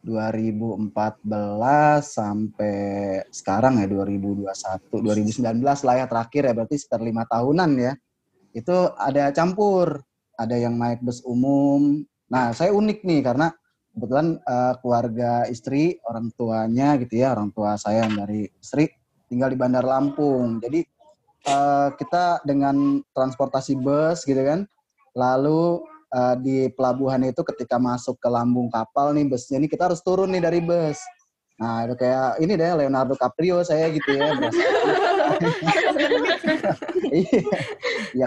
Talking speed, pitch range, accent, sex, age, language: 125 wpm, 115-150 Hz, native, male, 20-39, Indonesian